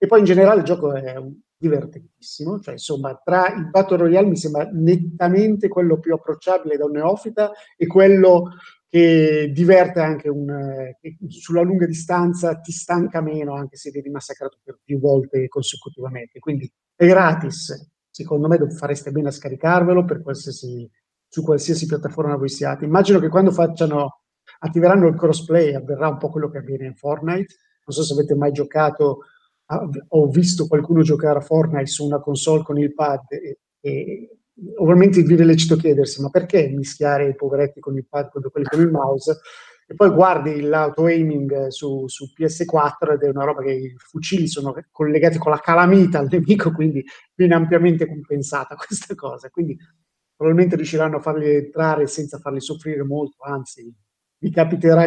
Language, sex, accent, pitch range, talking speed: Italian, male, native, 145-170 Hz, 170 wpm